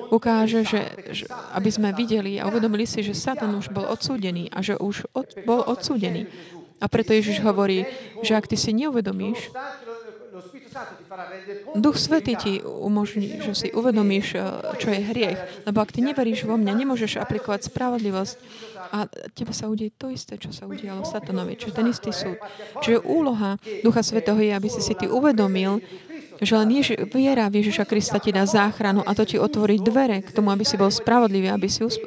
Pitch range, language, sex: 200-230 Hz, Slovak, female